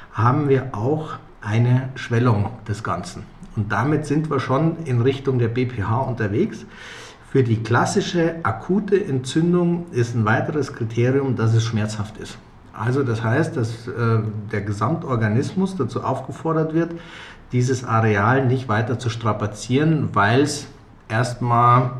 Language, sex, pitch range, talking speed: German, male, 110-135 Hz, 135 wpm